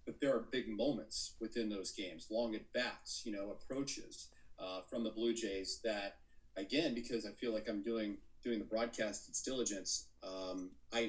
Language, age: English, 40-59